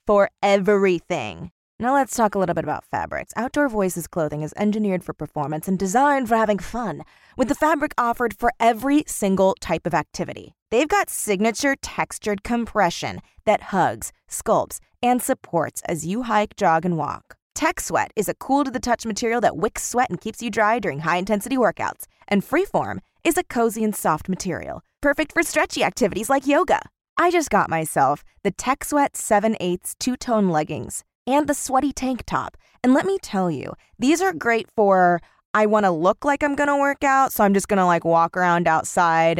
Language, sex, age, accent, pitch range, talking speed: English, female, 20-39, American, 185-270 Hz, 190 wpm